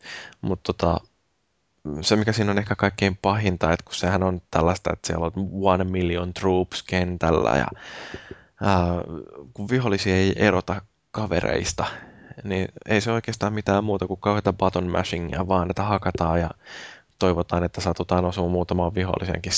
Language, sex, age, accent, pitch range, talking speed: Finnish, male, 20-39, native, 85-95 Hz, 145 wpm